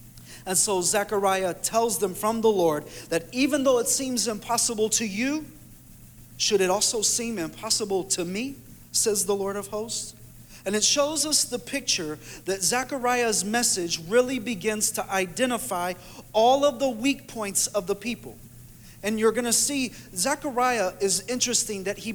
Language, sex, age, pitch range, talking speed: English, male, 40-59, 180-240 Hz, 160 wpm